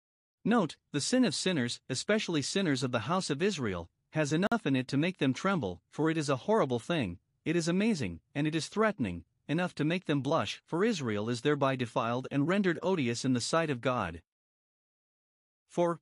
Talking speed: 195 wpm